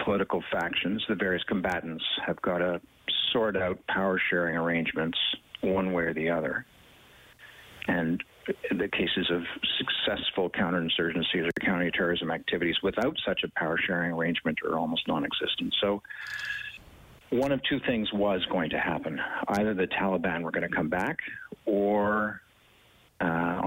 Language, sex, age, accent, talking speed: English, male, 50-69, American, 140 wpm